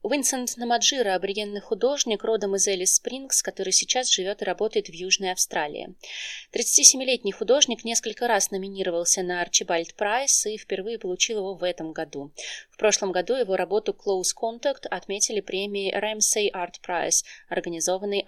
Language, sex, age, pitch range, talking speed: Russian, female, 20-39, 180-225 Hz, 145 wpm